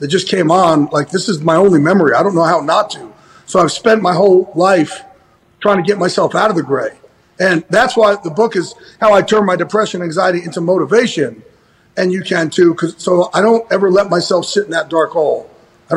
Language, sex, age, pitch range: English, male, 40-59, 165-205 Hz